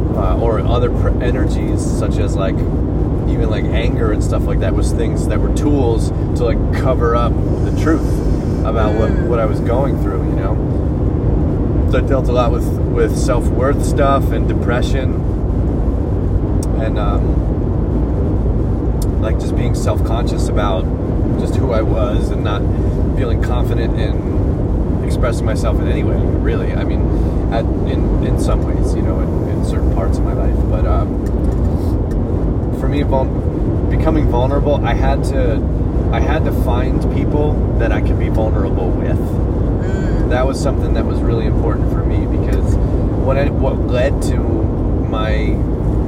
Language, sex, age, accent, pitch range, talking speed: English, male, 30-49, American, 80-105 Hz, 155 wpm